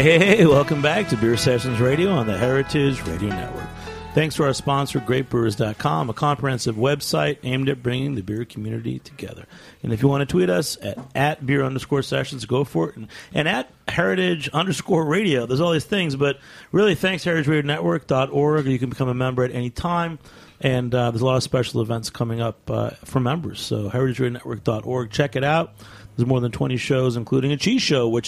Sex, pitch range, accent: male, 125-165 Hz, American